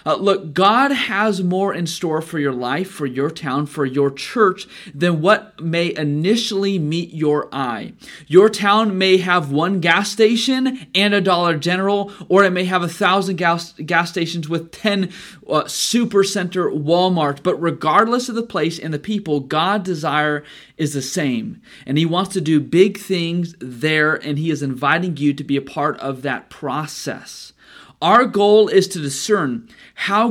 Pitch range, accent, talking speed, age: 150-195 Hz, American, 170 wpm, 30-49